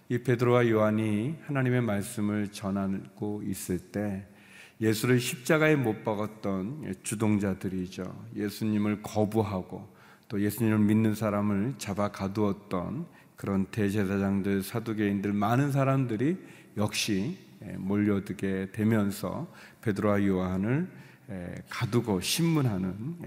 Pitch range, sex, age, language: 100-120 Hz, male, 40-59, Korean